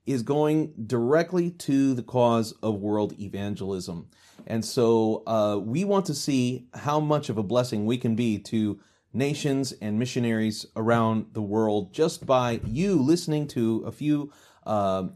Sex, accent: male, American